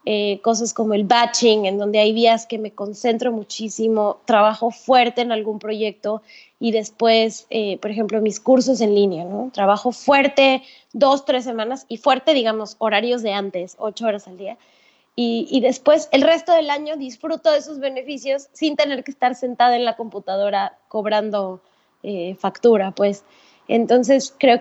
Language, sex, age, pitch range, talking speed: Spanish, female, 20-39, 215-265 Hz, 165 wpm